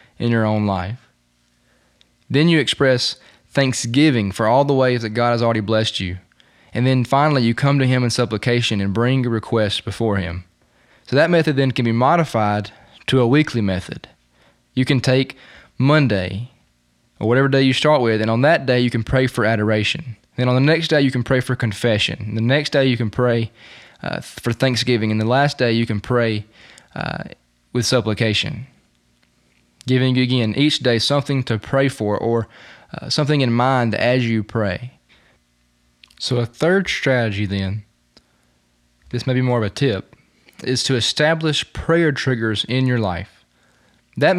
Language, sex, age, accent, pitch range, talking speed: English, male, 20-39, American, 105-135 Hz, 175 wpm